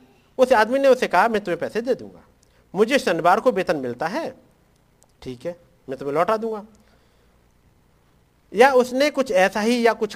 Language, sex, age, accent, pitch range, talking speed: Hindi, male, 50-69, native, 155-240 Hz, 170 wpm